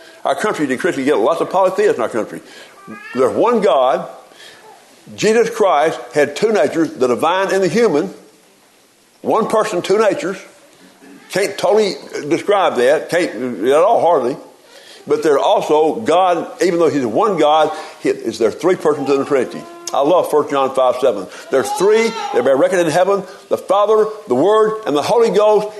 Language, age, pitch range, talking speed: English, 60-79, 155-235 Hz, 170 wpm